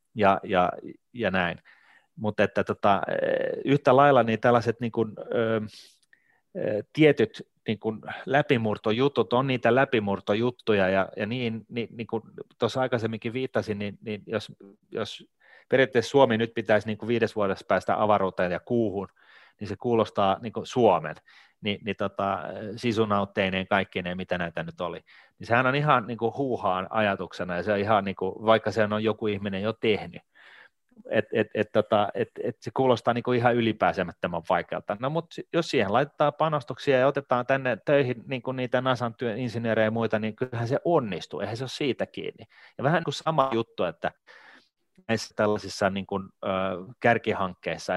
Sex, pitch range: male, 105-125 Hz